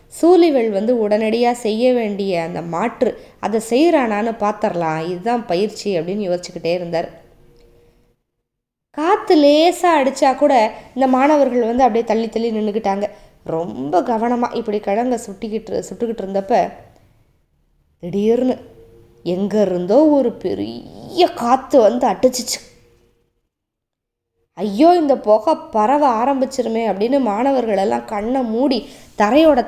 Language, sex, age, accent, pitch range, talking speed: Tamil, female, 20-39, native, 165-255 Hz, 105 wpm